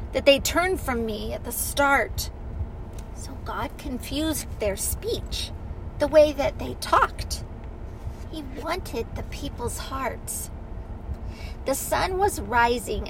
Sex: female